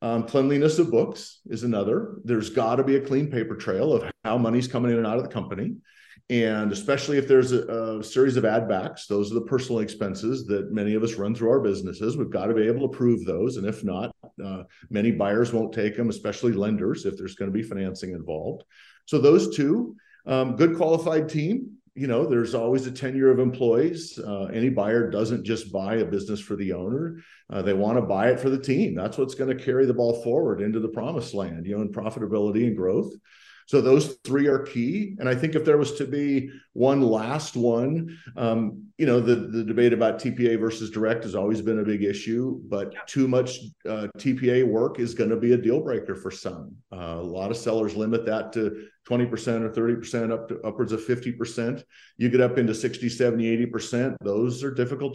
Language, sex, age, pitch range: English, male, 50-69, 110-130 Hz